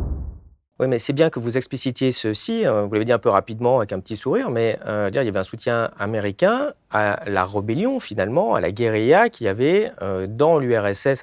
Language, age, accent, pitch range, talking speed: French, 40-59, French, 100-140 Hz, 210 wpm